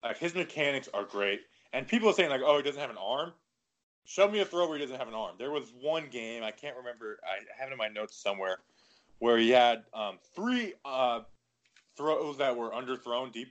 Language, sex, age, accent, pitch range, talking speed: English, male, 20-39, American, 115-155 Hz, 225 wpm